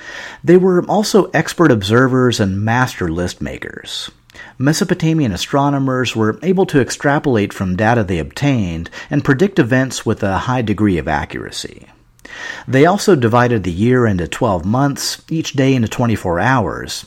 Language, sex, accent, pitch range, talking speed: English, male, American, 95-140 Hz, 145 wpm